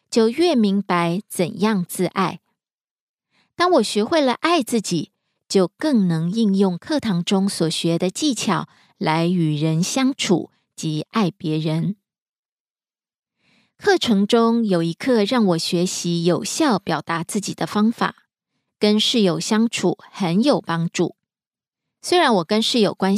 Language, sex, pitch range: Korean, female, 180-230 Hz